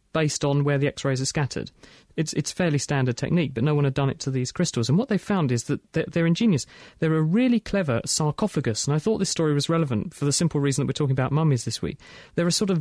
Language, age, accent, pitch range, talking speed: English, 40-59, British, 140-175 Hz, 265 wpm